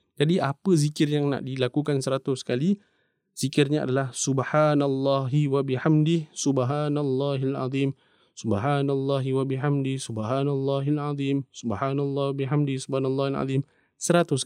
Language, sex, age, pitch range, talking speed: English, male, 20-39, 125-145 Hz, 105 wpm